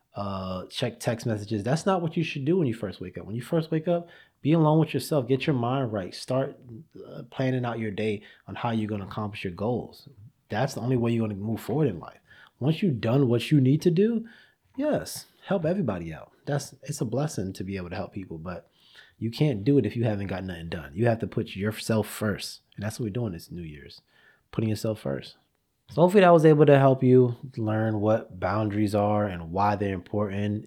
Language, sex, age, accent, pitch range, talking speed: English, male, 20-39, American, 105-155 Hz, 235 wpm